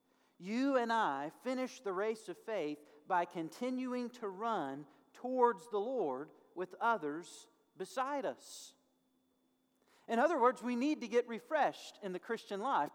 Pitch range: 185-265 Hz